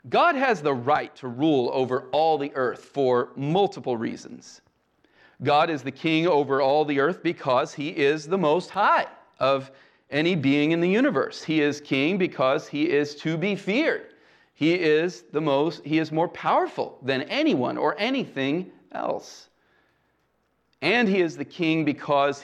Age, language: 40-59, English